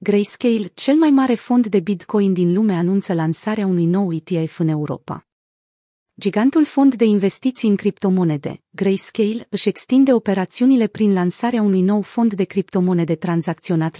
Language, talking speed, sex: Romanian, 145 wpm, female